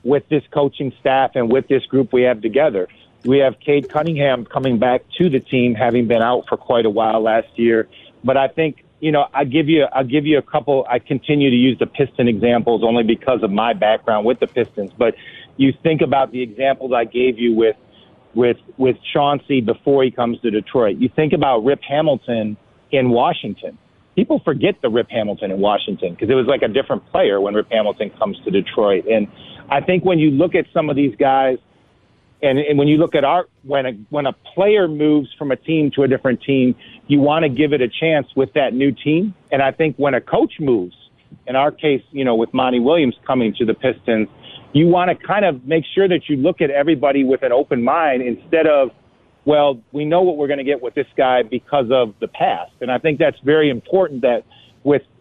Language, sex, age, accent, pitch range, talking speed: English, male, 40-59, American, 120-150 Hz, 220 wpm